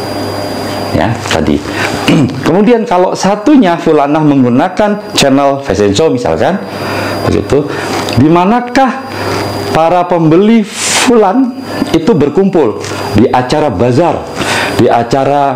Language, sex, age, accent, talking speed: Indonesian, male, 50-69, native, 95 wpm